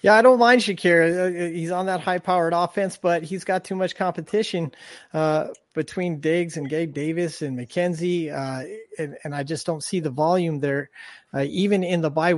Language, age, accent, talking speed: English, 30-49, American, 190 wpm